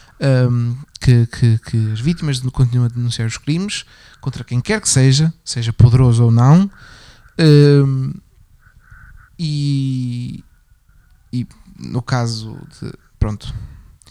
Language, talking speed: Portuguese, 115 wpm